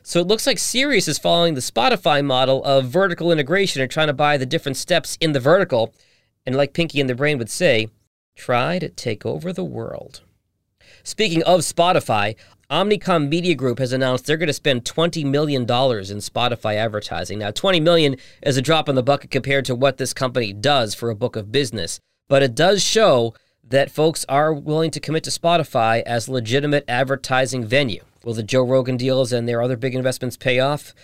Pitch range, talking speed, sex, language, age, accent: 120-160 Hz, 195 wpm, male, English, 40-59, American